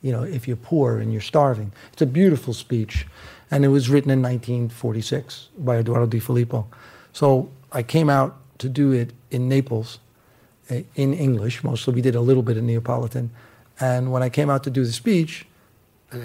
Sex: male